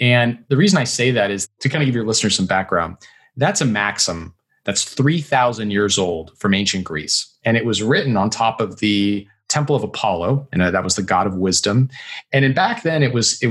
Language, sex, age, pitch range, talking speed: English, male, 30-49, 105-140 Hz, 220 wpm